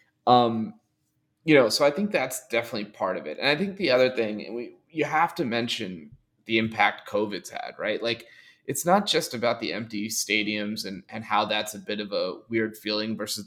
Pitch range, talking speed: 110-140 Hz, 210 wpm